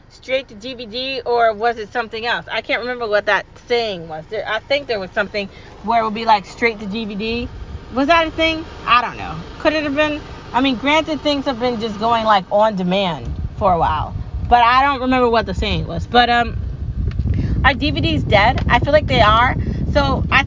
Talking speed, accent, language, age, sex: 215 wpm, American, English, 30-49, female